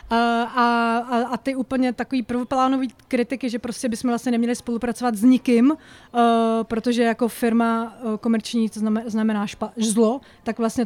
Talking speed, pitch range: 155 wpm, 225-250 Hz